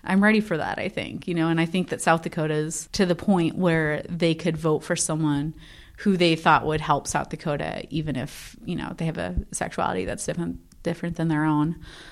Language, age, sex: English, 30-49, female